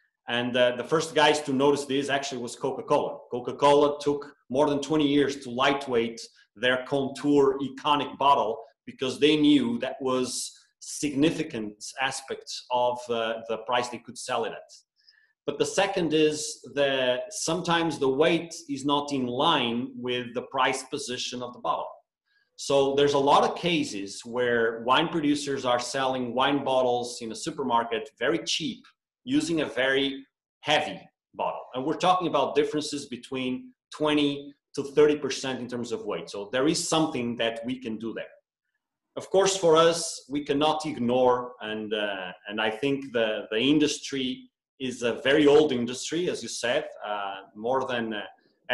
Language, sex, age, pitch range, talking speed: English, male, 30-49, 125-150 Hz, 160 wpm